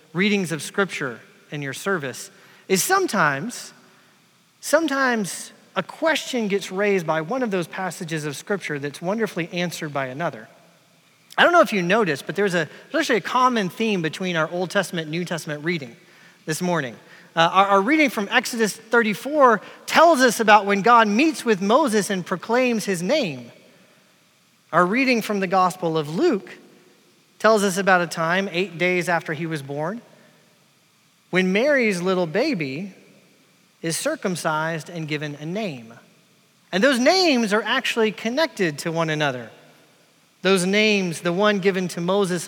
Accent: American